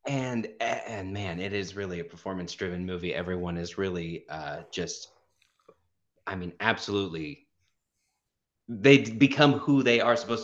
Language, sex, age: English, male, 30-49